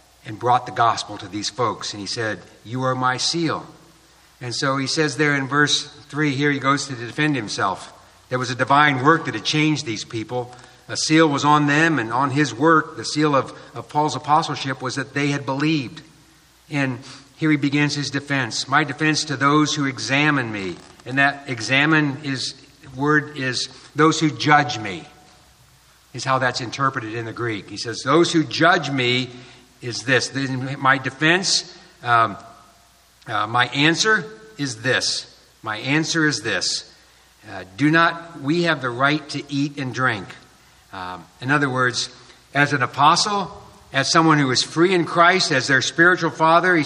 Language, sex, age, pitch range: English, male, 50-69, 130-155 Hz